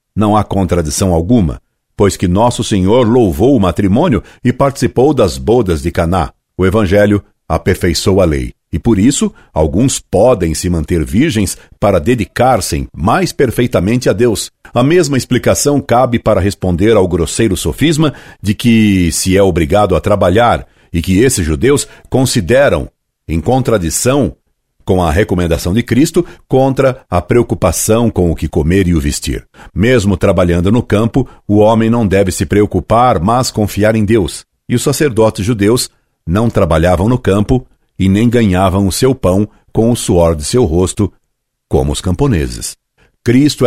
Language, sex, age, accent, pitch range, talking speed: Portuguese, male, 60-79, Brazilian, 90-120 Hz, 155 wpm